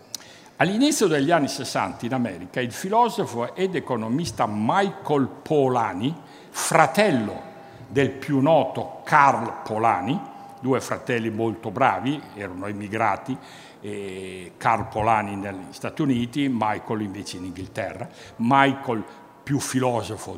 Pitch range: 105-150 Hz